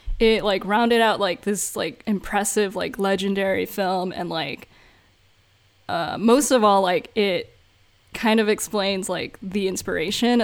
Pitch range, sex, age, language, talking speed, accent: 195-235 Hz, female, 10-29, English, 145 wpm, American